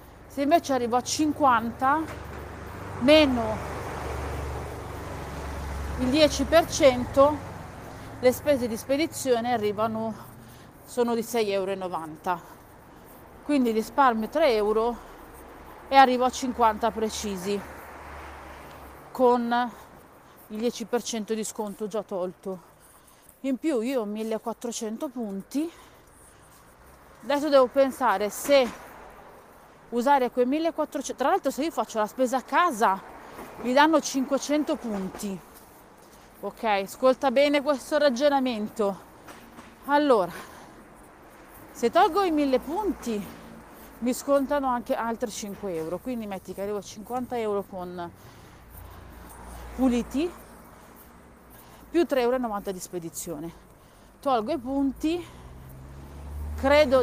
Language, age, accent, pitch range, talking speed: Italian, 40-59, native, 200-275 Hz, 100 wpm